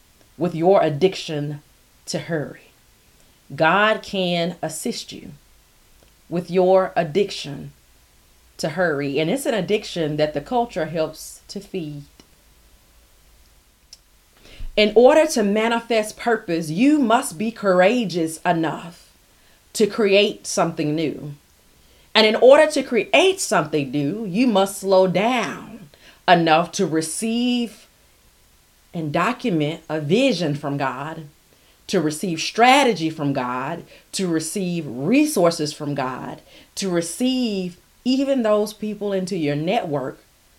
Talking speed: 110 wpm